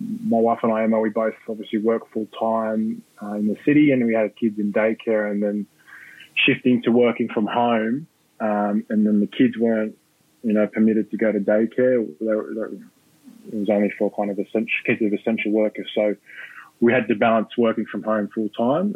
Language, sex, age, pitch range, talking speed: English, male, 20-39, 105-115 Hz, 195 wpm